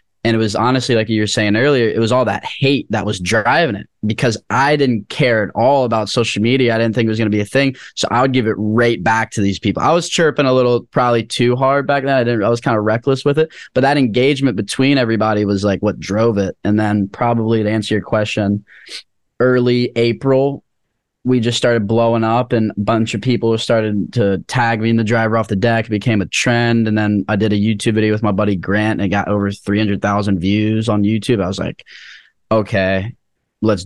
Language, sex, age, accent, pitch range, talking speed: English, male, 10-29, American, 105-120 Hz, 235 wpm